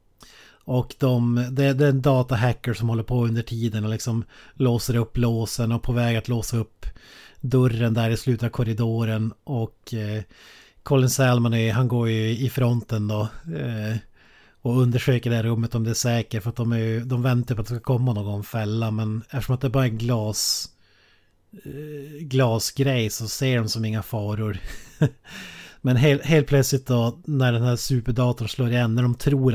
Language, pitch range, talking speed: Swedish, 115-135 Hz, 180 wpm